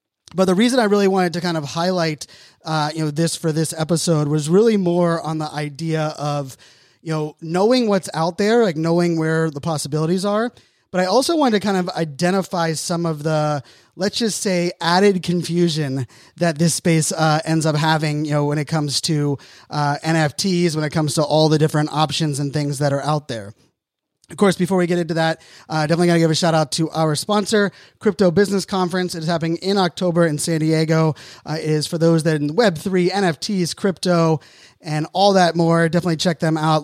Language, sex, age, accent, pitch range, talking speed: English, male, 30-49, American, 150-180 Hz, 210 wpm